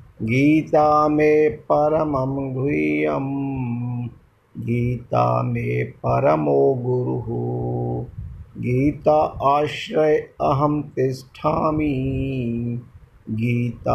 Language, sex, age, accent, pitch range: Hindi, male, 50-69, native, 115-140 Hz